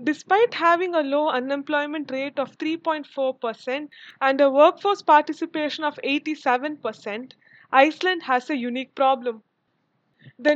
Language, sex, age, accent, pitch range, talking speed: English, female, 20-39, Indian, 260-335 Hz, 115 wpm